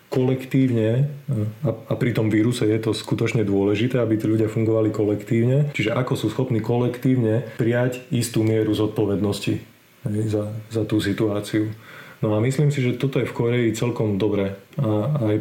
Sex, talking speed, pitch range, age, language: male, 155 wpm, 105-120 Hz, 30-49, Slovak